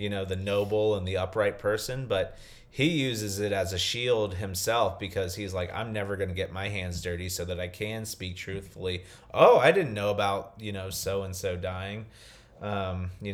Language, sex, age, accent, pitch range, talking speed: English, male, 30-49, American, 90-105 Hz, 205 wpm